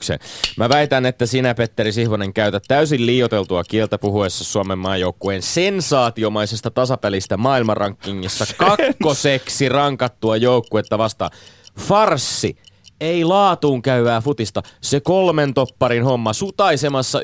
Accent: native